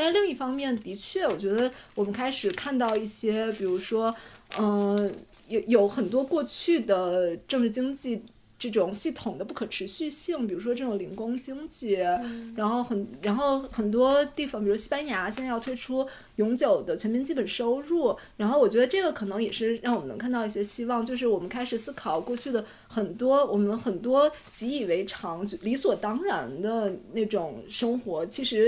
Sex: female